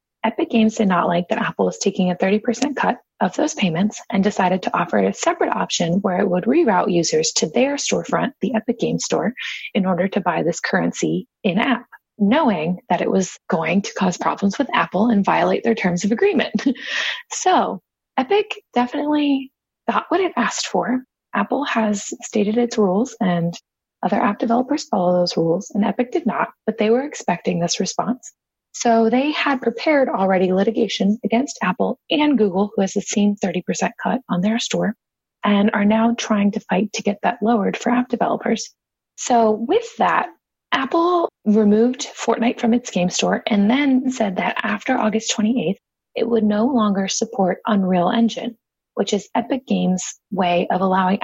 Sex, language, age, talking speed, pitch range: female, English, 20-39, 175 wpm, 190-240 Hz